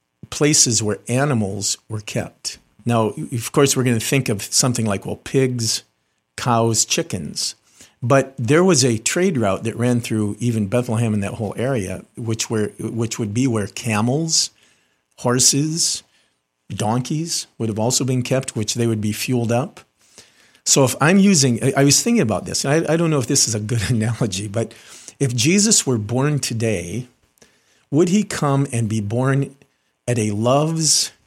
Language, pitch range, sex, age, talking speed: English, 115-145 Hz, male, 50-69, 170 wpm